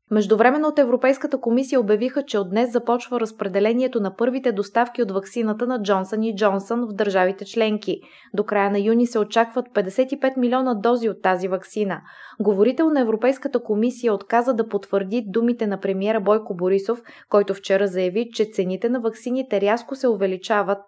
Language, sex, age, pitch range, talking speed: Bulgarian, female, 20-39, 200-245 Hz, 160 wpm